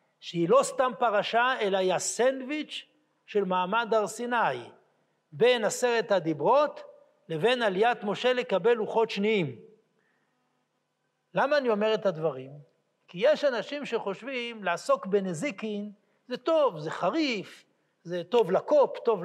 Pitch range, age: 205-285 Hz, 60-79